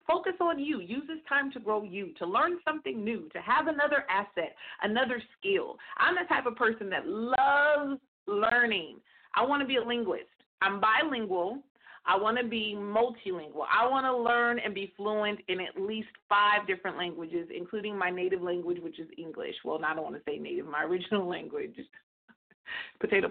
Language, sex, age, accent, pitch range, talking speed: English, female, 40-59, American, 195-270 Hz, 185 wpm